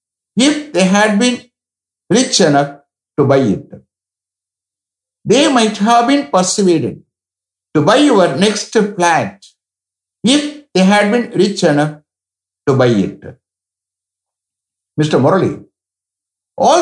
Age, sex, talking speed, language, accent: 60-79, male, 110 wpm, English, Indian